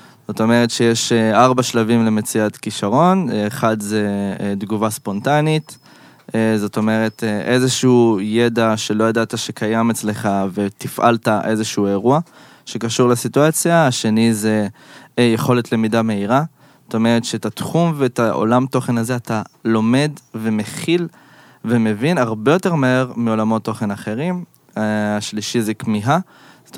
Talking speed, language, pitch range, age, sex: 115 wpm, Hebrew, 105-125 Hz, 20-39, male